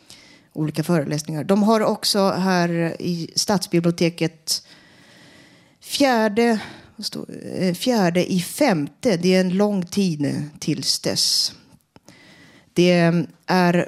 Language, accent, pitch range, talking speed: Swedish, native, 165-210 Hz, 90 wpm